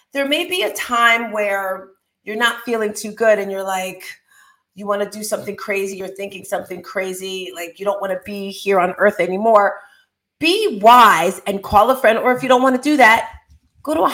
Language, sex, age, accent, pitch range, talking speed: English, female, 40-59, American, 195-270 Hz, 215 wpm